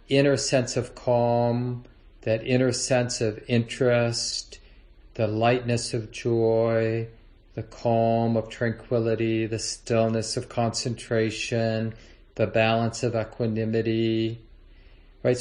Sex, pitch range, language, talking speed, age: male, 115-135 Hz, English, 100 wpm, 40-59